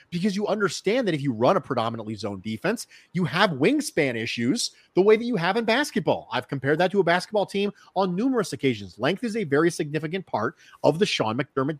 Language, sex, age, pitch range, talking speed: English, male, 40-59, 145-205 Hz, 215 wpm